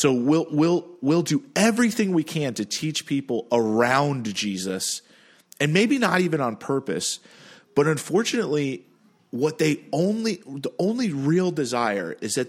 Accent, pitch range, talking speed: American, 120-160 Hz, 145 wpm